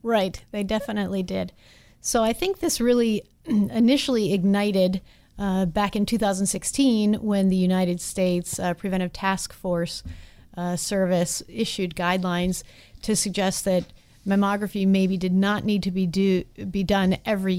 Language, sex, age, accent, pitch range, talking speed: English, female, 40-59, American, 175-205 Hz, 135 wpm